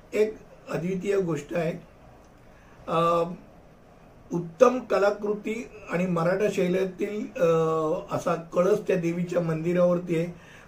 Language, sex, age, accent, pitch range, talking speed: Hindi, male, 50-69, native, 170-210 Hz, 65 wpm